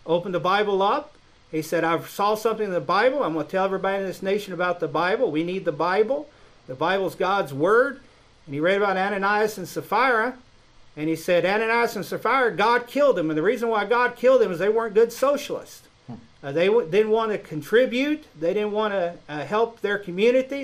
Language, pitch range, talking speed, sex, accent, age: English, 165-225 Hz, 215 wpm, male, American, 50-69